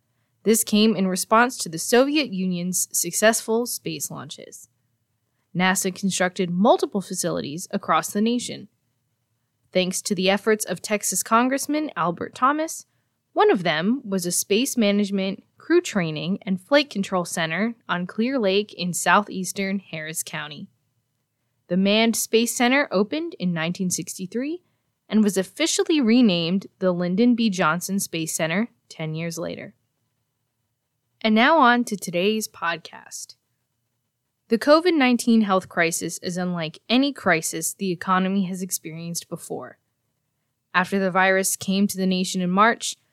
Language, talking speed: English, 130 wpm